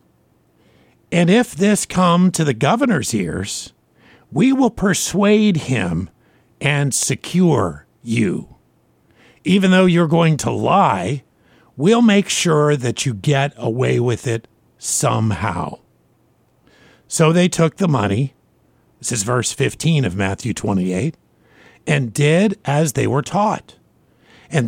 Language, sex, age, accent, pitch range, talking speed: English, male, 50-69, American, 125-180 Hz, 120 wpm